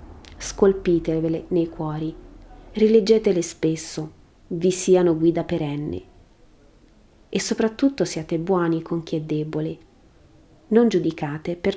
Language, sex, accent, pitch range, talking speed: Italian, female, native, 155-190 Hz, 100 wpm